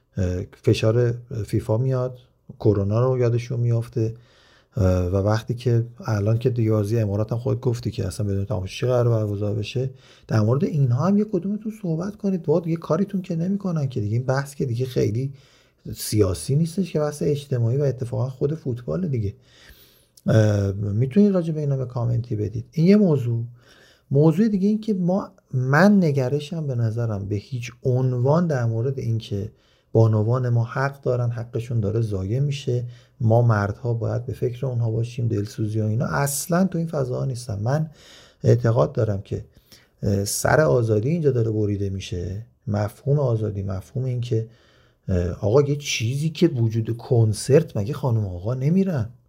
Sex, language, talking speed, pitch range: male, Persian, 155 wpm, 110-145 Hz